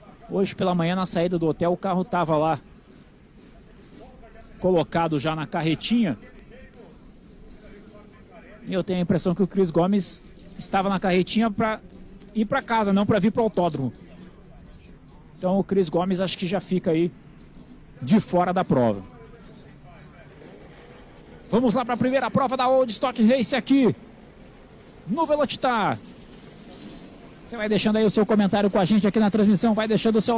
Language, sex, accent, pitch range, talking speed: Portuguese, male, Brazilian, 165-215 Hz, 160 wpm